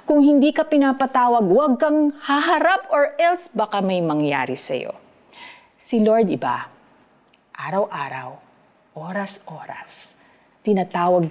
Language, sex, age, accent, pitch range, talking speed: Filipino, female, 50-69, native, 180-245 Hz, 100 wpm